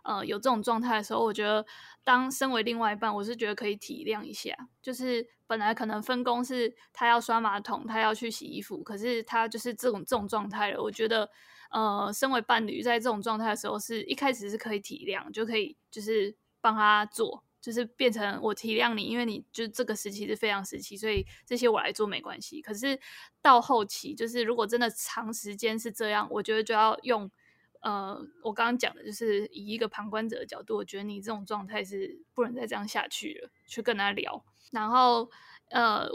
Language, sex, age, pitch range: Chinese, female, 20-39, 215-245 Hz